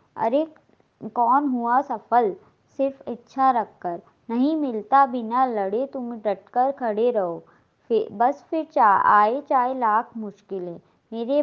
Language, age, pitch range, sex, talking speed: Hindi, 20-39, 210-265 Hz, male, 125 wpm